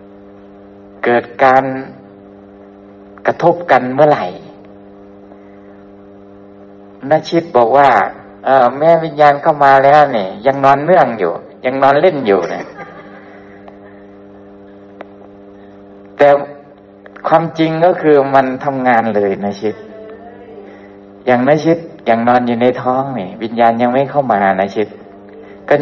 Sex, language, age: male, Thai, 60-79